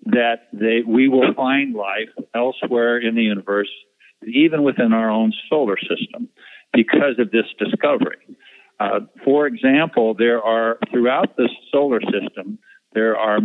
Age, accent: 50-69, American